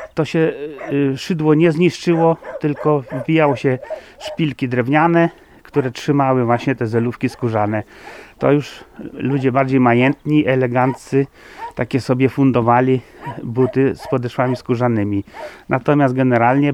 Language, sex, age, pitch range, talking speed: Polish, male, 30-49, 130-180 Hz, 110 wpm